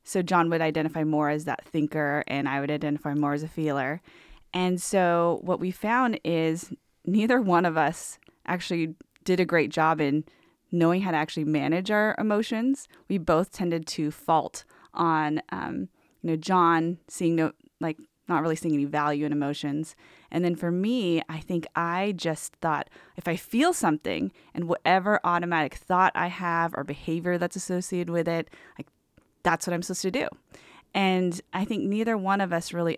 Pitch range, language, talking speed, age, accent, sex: 155-185 Hz, English, 180 wpm, 20-39, American, female